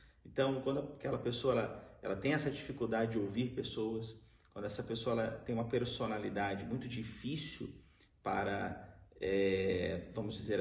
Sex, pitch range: male, 110-130 Hz